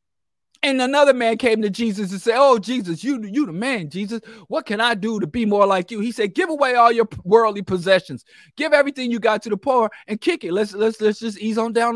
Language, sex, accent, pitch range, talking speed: English, male, American, 150-230 Hz, 245 wpm